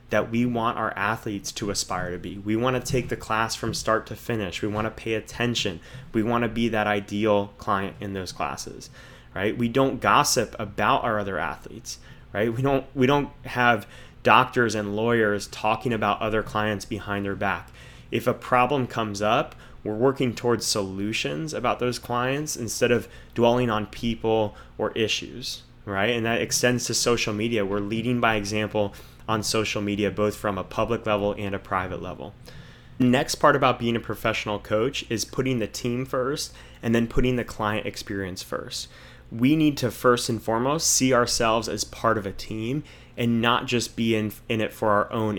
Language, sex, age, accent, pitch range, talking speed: English, male, 20-39, American, 105-125 Hz, 190 wpm